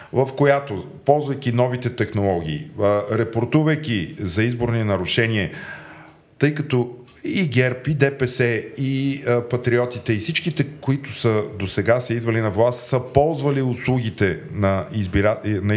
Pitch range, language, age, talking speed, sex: 95-135 Hz, Bulgarian, 40-59, 135 wpm, male